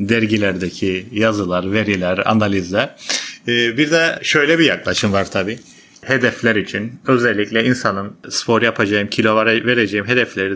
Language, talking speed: Turkish, 115 wpm